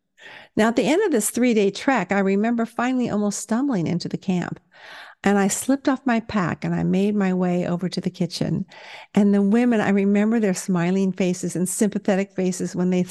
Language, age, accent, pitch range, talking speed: English, 50-69, American, 185-235 Hz, 200 wpm